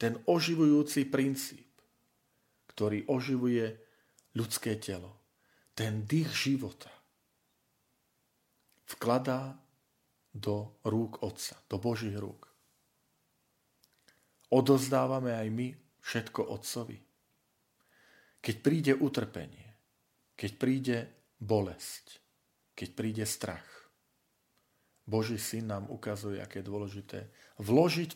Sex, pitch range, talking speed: male, 105-135 Hz, 85 wpm